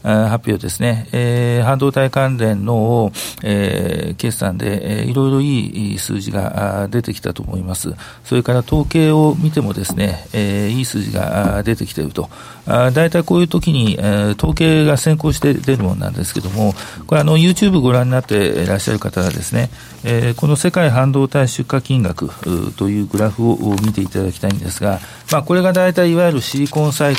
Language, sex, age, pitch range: Japanese, male, 40-59, 105-145 Hz